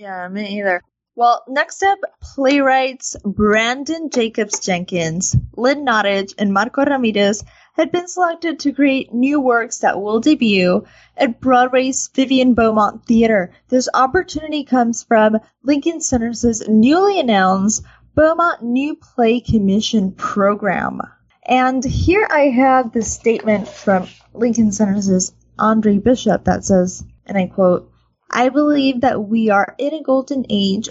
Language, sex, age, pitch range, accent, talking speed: English, female, 10-29, 200-270 Hz, American, 130 wpm